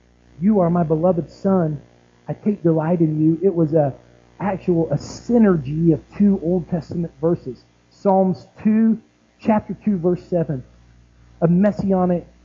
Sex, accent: male, American